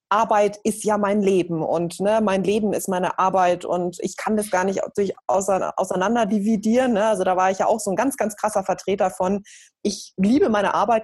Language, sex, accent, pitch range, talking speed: German, female, German, 190-245 Hz, 200 wpm